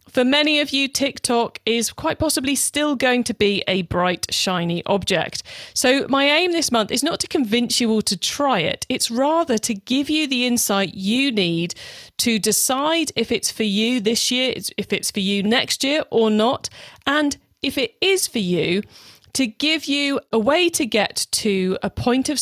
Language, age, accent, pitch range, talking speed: English, 40-59, British, 205-265 Hz, 195 wpm